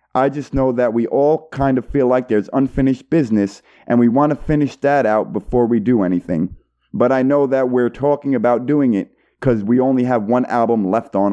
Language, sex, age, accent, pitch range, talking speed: English, male, 30-49, American, 120-160 Hz, 215 wpm